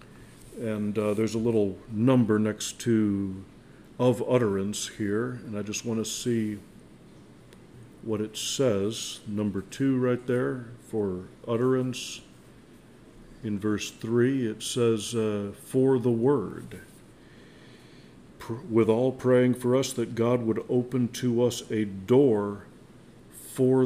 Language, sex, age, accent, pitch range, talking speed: English, male, 50-69, American, 110-130 Hz, 125 wpm